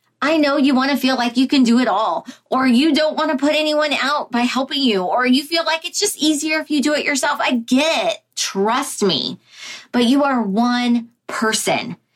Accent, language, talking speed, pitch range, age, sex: American, English, 210 wpm, 225-295 Hz, 20-39, female